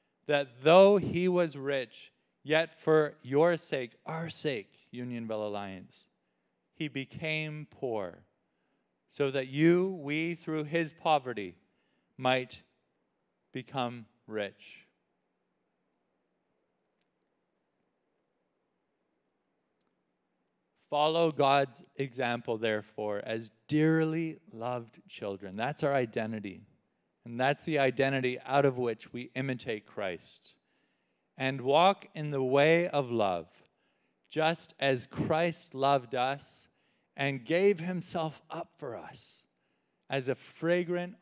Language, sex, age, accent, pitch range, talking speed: English, male, 40-59, American, 115-155 Hz, 100 wpm